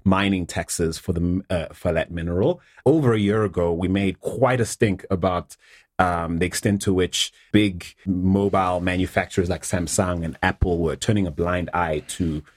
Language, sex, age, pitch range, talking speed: English, male, 30-49, 85-100 Hz, 170 wpm